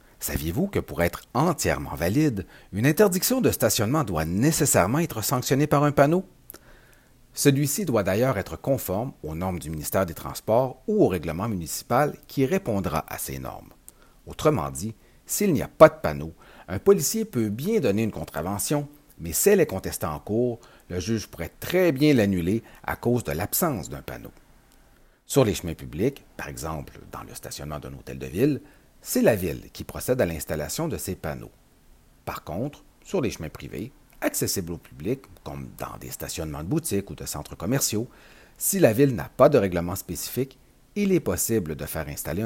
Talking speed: 180 wpm